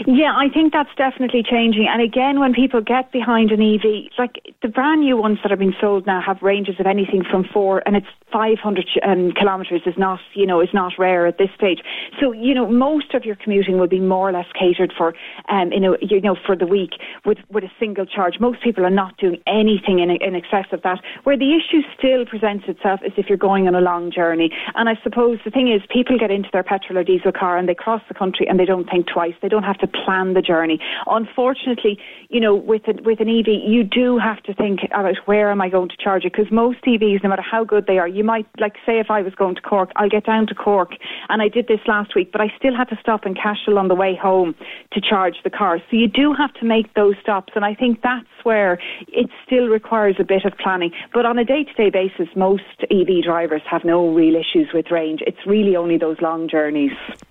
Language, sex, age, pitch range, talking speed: English, female, 30-49, 185-230 Hz, 245 wpm